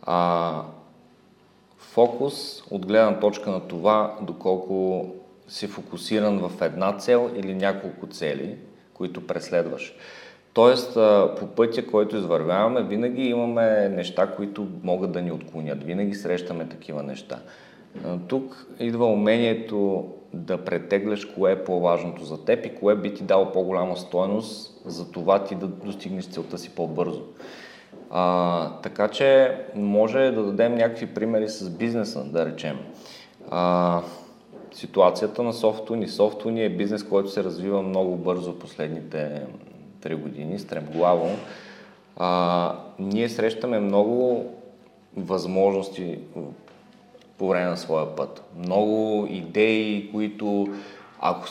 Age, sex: 40-59, male